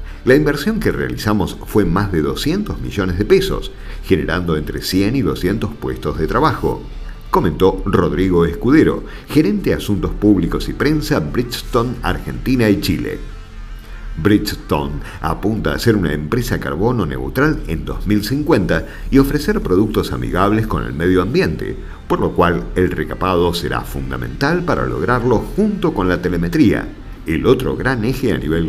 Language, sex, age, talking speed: Spanish, male, 50-69, 145 wpm